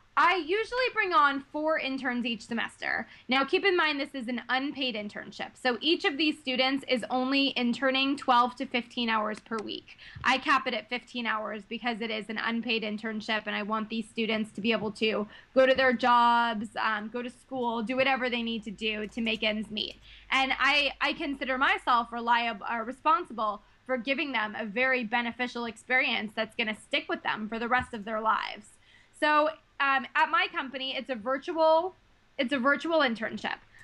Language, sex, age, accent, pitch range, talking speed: English, female, 20-39, American, 235-275 Hz, 195 wpm